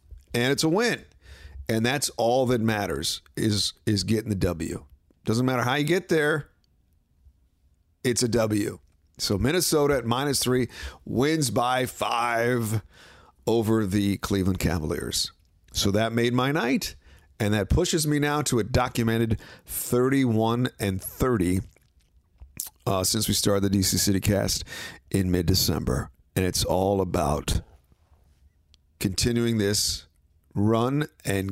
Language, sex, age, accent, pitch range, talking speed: English, male, 50-69, American, 90-120 Hz, 135 wpm